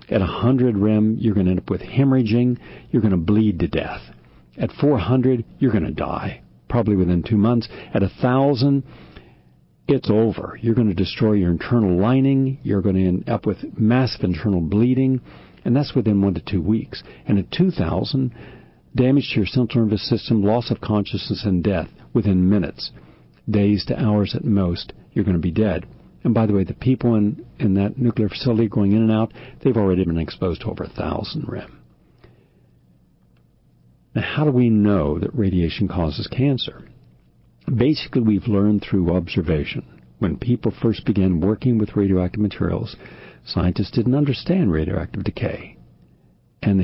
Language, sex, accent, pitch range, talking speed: English, male, American, 95-120 Hz, 165 wpm